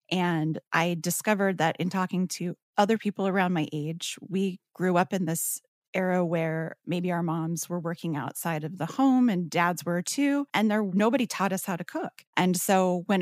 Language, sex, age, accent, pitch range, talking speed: English, female, 30-49, American, 170-195 Hz, 195 wpm